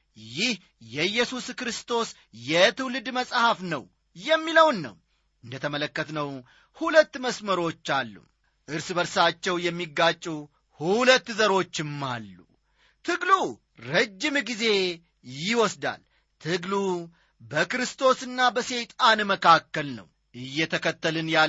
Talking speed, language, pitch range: 80 wpm, Amharic, 150-240 Hz